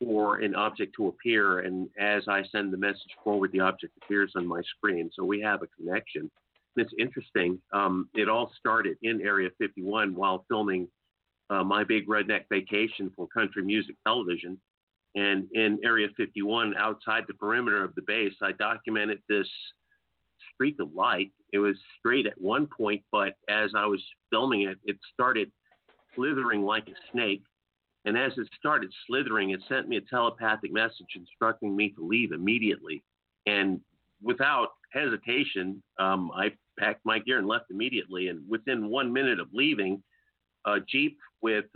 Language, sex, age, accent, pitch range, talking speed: English, male, 50-69, American, 95-115 Hz, 160 wpm